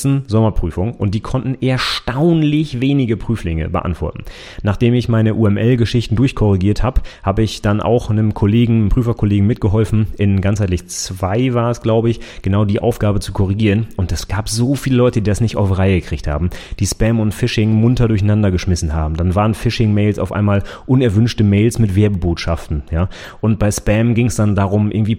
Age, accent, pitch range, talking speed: 30-49, German, 95-115 Hz, 175 wpm